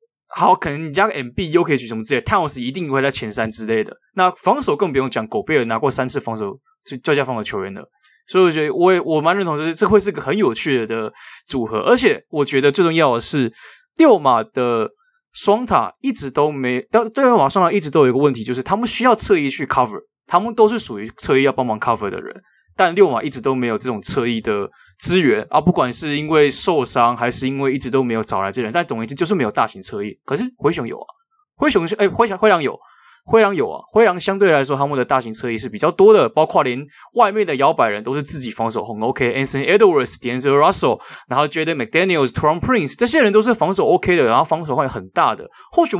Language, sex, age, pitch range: Chinese, male, 20-39, 130-210 Hz